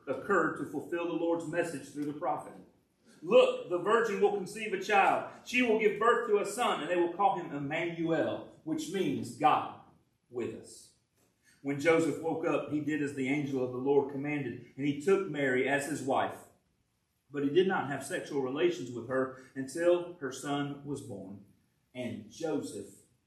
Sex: male